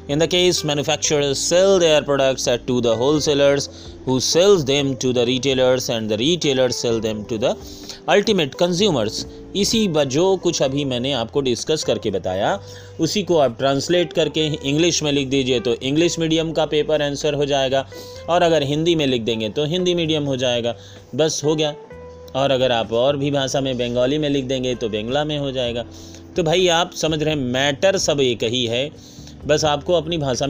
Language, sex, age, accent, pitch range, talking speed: Hindi, male, 30-49, native, 115-150 Hz, 195 wpm